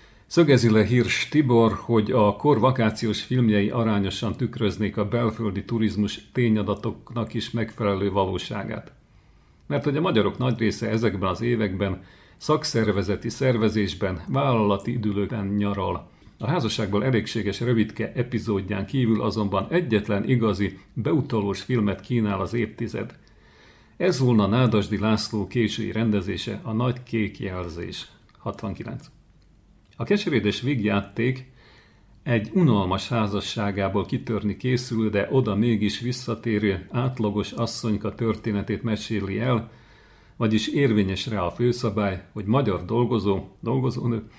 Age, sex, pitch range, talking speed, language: 50-69, male, 105-120 Hz, 110 wpm, Hungarian